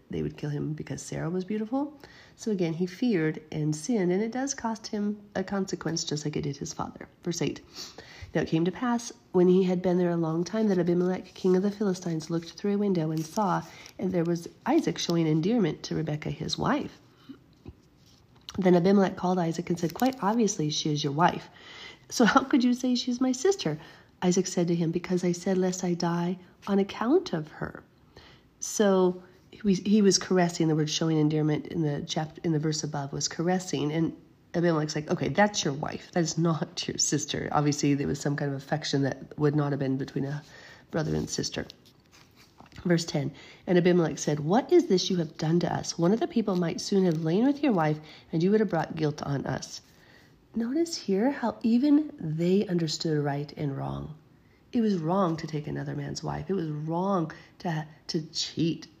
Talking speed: 200 wpm